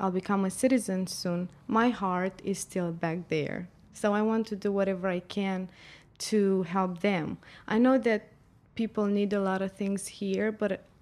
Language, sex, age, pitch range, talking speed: English, female, 20-39, 185-215 Hz, 180 wpm